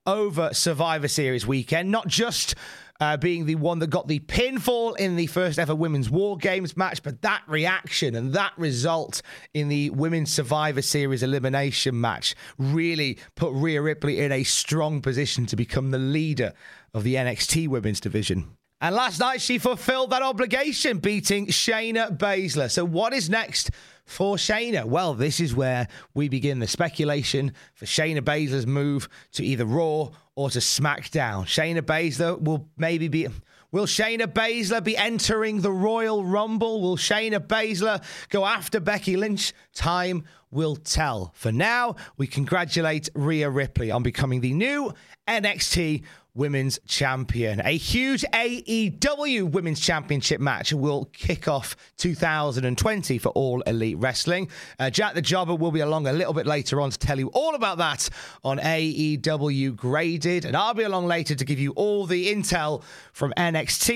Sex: male